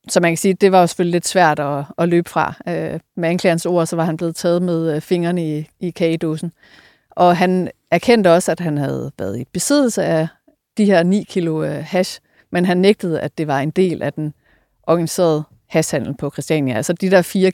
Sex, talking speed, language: female, 210 wpm, Danish